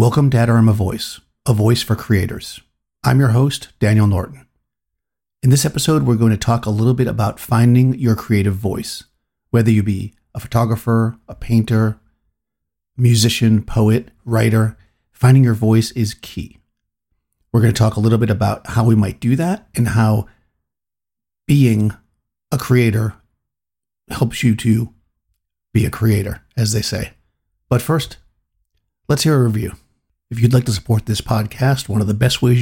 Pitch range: 105-125 Hz